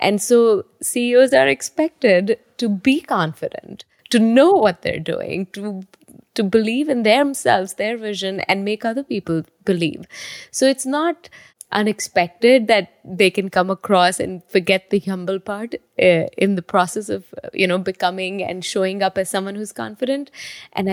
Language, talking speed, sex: English, 160 wpm, female